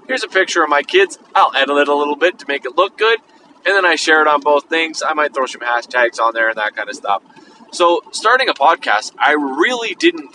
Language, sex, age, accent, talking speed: English, male, 20-39, American, 255 wpm